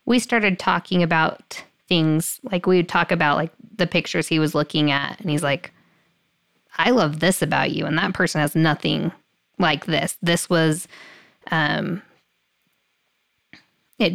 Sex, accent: female, American